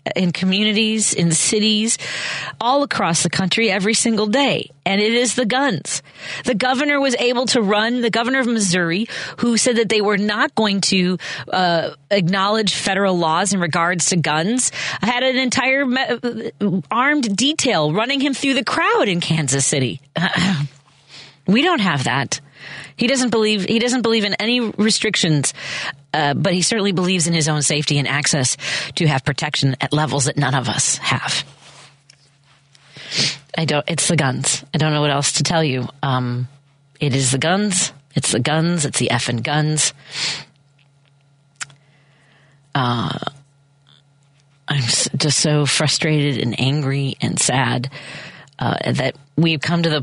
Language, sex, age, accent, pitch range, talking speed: English, female, 40-59, American, 140-210 Hz, 155 wpm